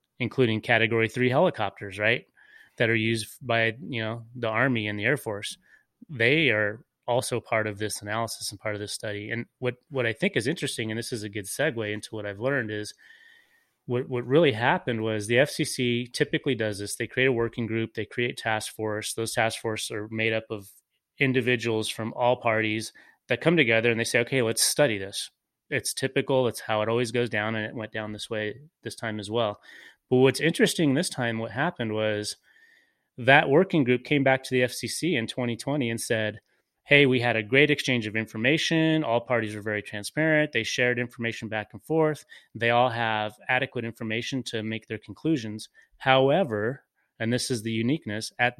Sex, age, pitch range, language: male, 30-49, 110-130 Hz, English